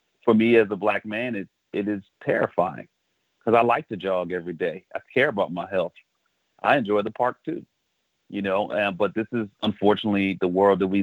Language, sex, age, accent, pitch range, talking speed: English, male, 30-49, American, 95-105 Hz, 205 wpm